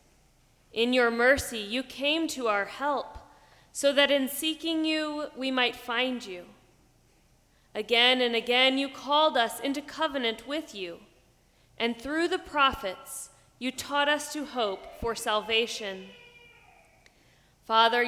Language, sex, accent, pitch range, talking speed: English, female, American, 225-280 Hz, 130 wpm